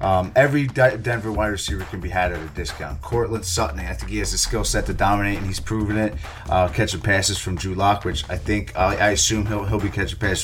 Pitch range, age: 90-105 Hz, 30-49